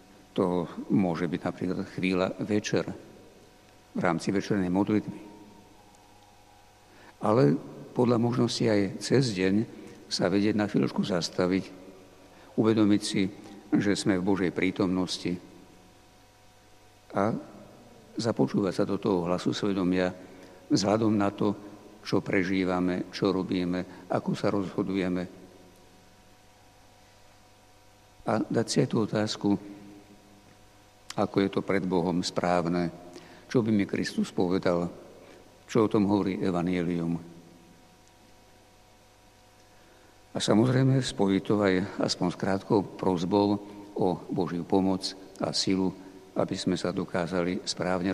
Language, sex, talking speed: Slovak, male, 105 wpm